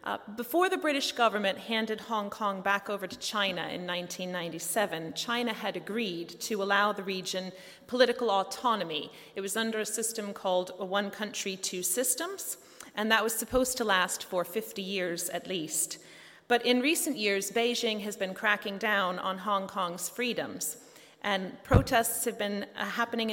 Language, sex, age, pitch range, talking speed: English, female, 30-49, 185-230 Hz, 165 wpm